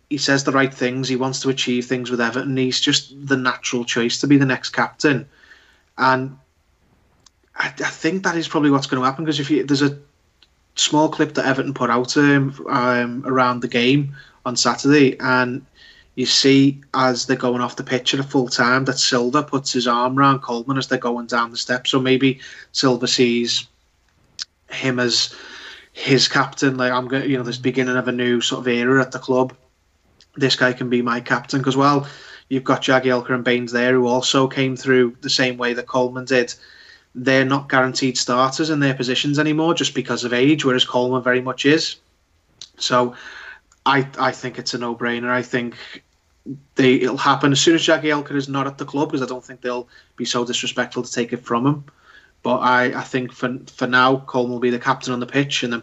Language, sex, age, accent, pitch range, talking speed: English, male, 20-39, British, 125-135 Hz, 210 wpm